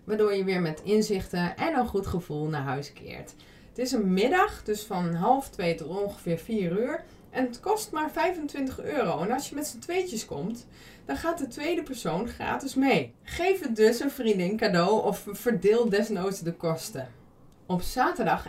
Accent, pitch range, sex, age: Dutch, 185-265 Hz, female, 20-39